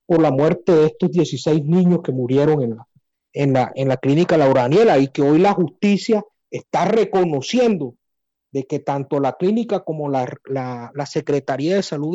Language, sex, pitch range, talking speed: English, male, 135-180 Hz, 185 wpm